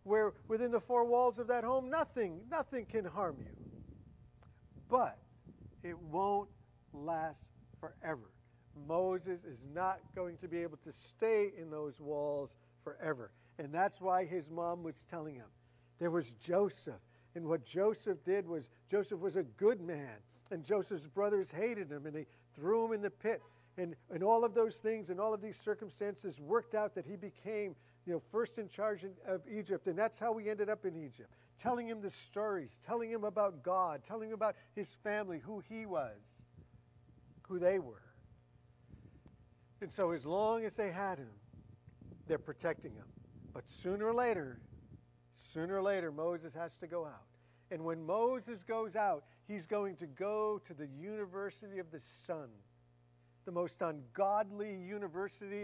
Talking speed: 170 wpm